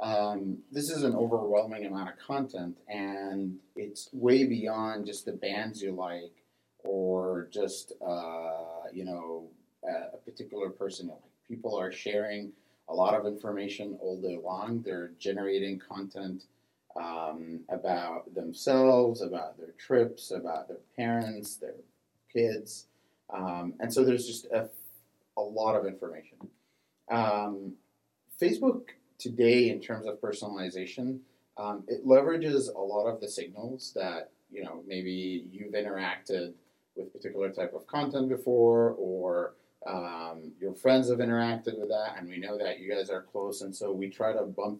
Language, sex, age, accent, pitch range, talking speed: English, male, 30-49, American, 95-115 Hz, 150 wpm